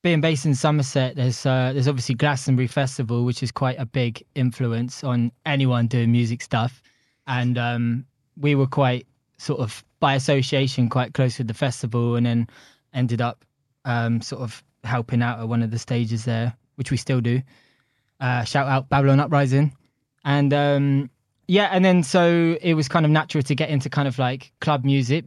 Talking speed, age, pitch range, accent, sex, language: 185 wpm, 20-39, 120-140 Hz, British, male, English